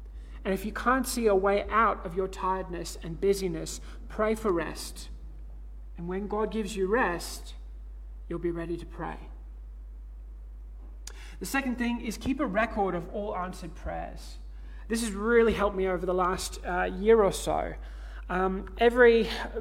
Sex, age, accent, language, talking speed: male, 20-39, Australian, English, 160 wpm